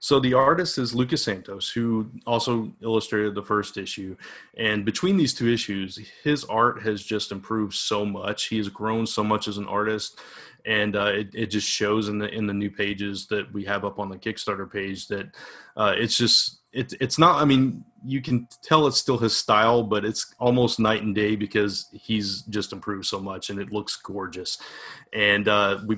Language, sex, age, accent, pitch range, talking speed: English, male, 30-49, American, 100-110 Hz, 200 wpm